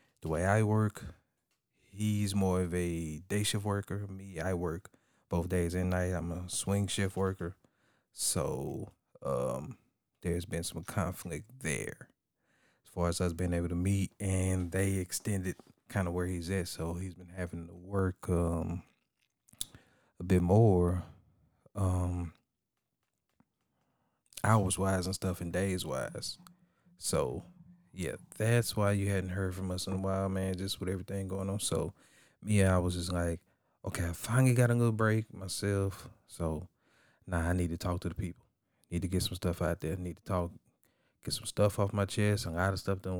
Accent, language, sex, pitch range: American, English, male, 90-105 Hz